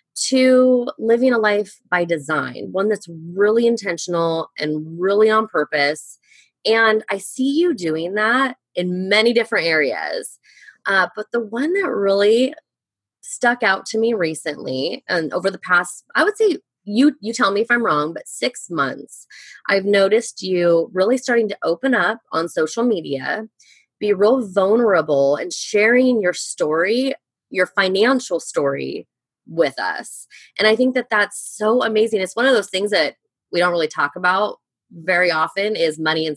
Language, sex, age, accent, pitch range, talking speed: English, female, 20-39, American, 175-245 Hz, 160 wpm